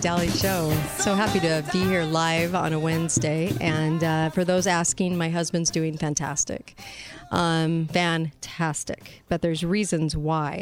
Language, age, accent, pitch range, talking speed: English, 40-59, American, 155-170 Hz, 145 wpm